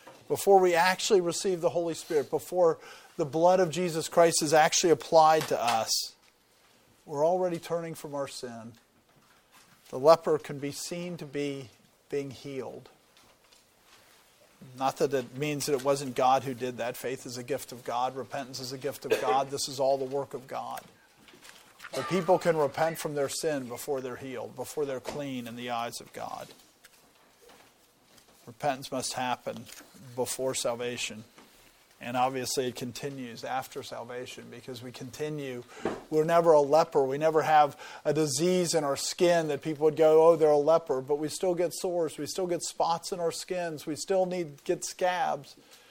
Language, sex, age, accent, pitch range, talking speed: English, male, 50-69, American, 135-165 Hz, 175 wpm